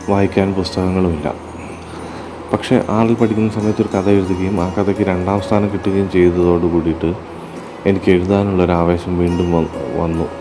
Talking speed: 115 wpm